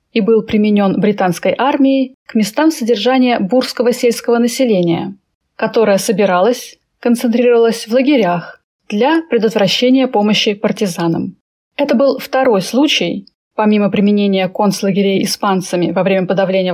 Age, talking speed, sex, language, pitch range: 20-39, 110 wpm, female, Russian, 195-245 Hz